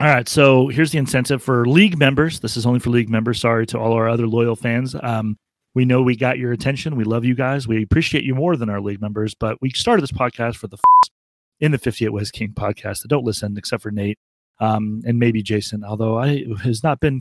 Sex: male